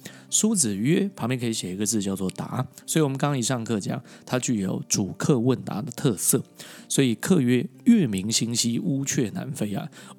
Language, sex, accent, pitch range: Chinese, male, native, 110-165 Hz